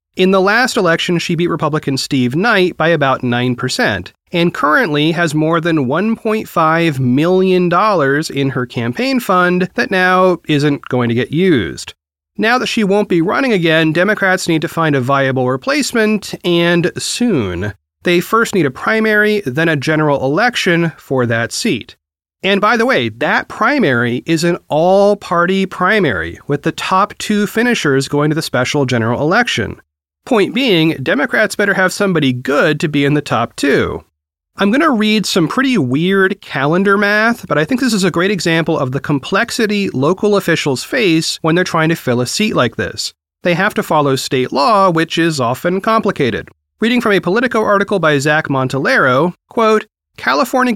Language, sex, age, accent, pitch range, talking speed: English, male, 30-49, American, 140-200 Hz, 170 wpm